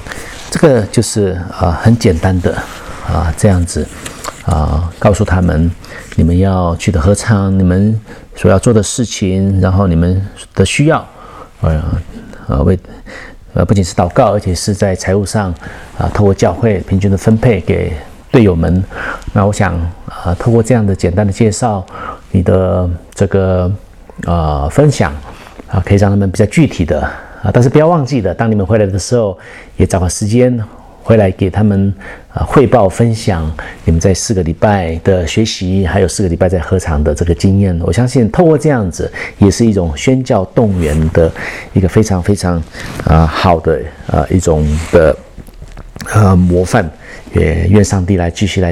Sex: male